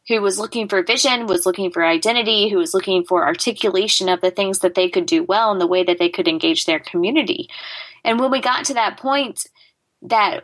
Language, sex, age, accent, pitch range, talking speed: English, female, 20-39, American, 185-245 Hz, 225 wpm